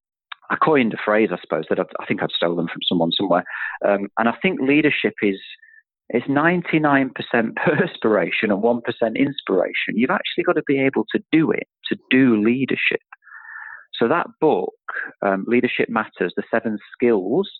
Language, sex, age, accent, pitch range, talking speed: English, male, 40-59, British, 100-150 Hz, 160 wpm